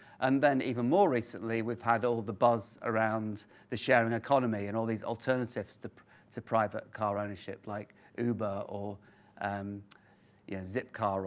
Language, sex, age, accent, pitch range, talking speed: English, male, 40-59, British, 105-125 Hz, 160 wpm